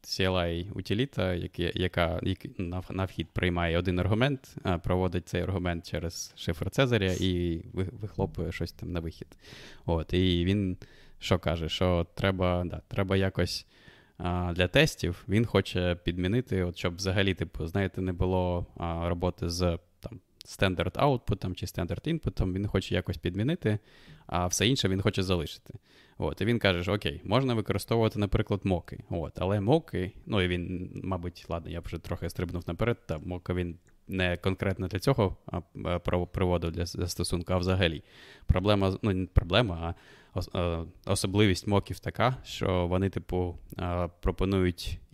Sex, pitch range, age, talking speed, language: male, 90-100 Hz, 20-39, 140 wpm, Ukrainian